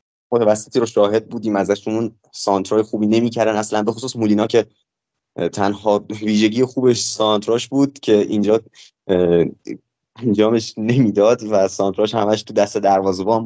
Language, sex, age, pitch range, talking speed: Persian, male, 20-39, 100-115 Hz, 135 wpm